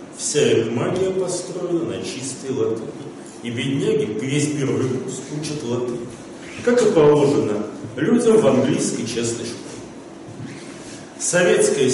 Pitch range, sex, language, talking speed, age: 125-160 Hz, male, Russian, 115 wpm, 40-59